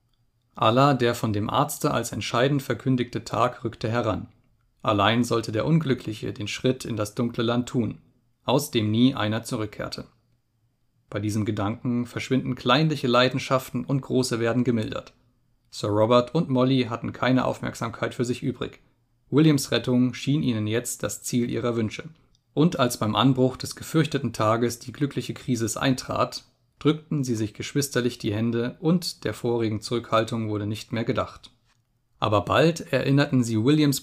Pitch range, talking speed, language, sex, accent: 115-130 Hz, 150 wpm, German, male, German